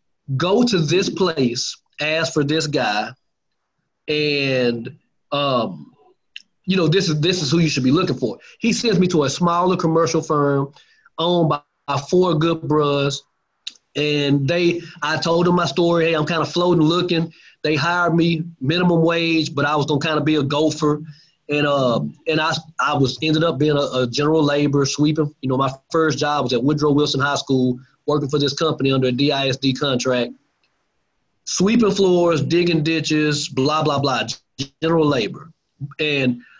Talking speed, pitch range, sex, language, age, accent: 175 wpm, 140-170 Hz, male, English, 30-49, American